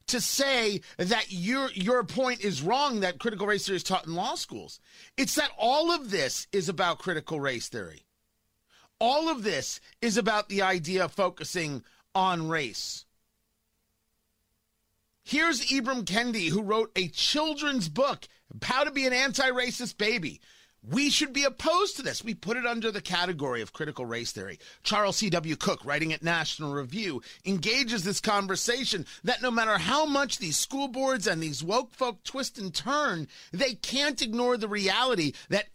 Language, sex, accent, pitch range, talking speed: English, male, American, 165-245 Hz, 165 wpm